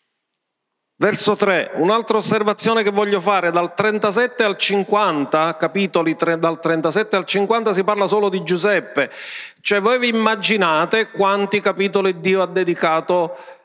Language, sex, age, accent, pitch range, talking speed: Italian, male, 40-59, native, 160-210 Hz, 135 wpm